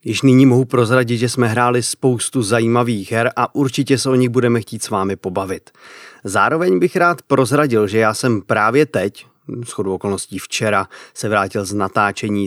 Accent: native